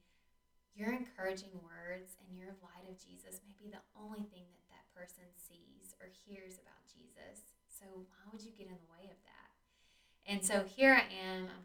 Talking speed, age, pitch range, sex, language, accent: 185 wpm, 20-39, 175-205 Hz, female, English, American